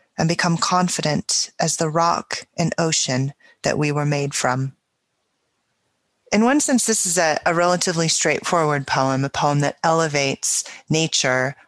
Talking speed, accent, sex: 145 wpm, American, female